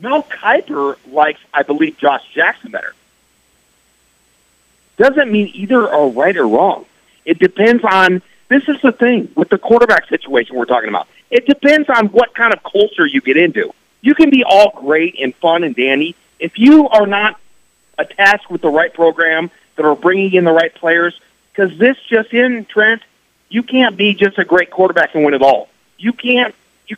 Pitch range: 160-235 Hz